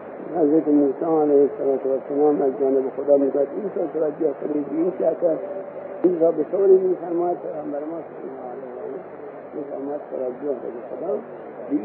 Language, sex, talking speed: English, male, 135 wpm